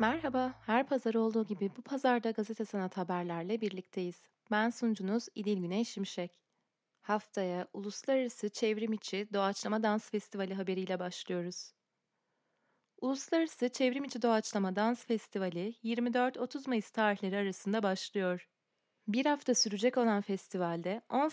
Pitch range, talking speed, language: 195-245 Hz, 110 wpm, Turkish